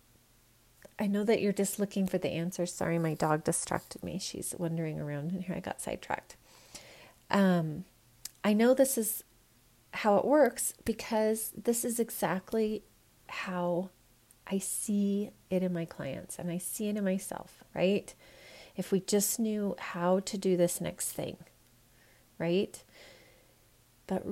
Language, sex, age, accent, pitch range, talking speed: English, female, 30-49, American, 170-205 Hz, 150 wpm